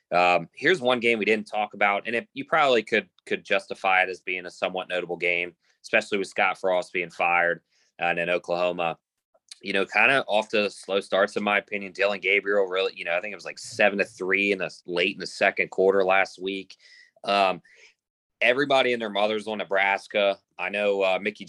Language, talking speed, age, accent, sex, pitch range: English, 210 wpm, 20-39, American, male, 90-105 Hz